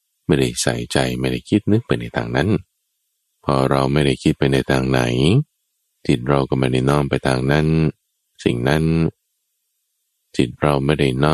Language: Thai